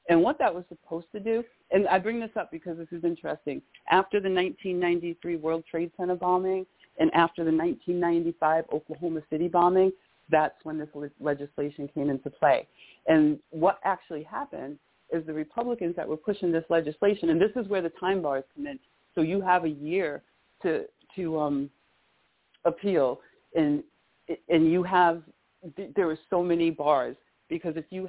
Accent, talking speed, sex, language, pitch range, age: American, 170 wpm, female, English, 155-190 Hz, 40-59